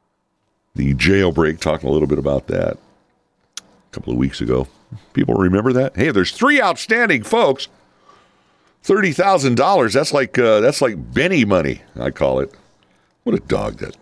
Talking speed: 155 wpm